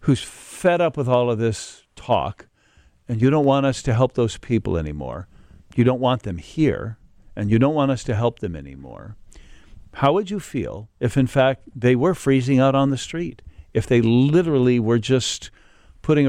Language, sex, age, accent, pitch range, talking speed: English, male, 50-69, American, 105-135 Hz, 190 wpm